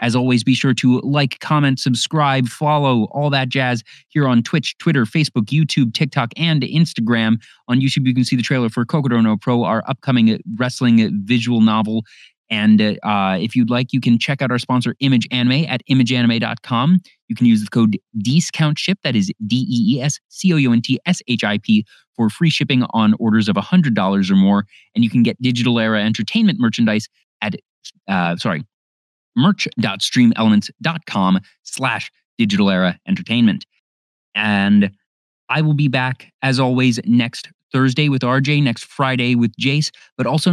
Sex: male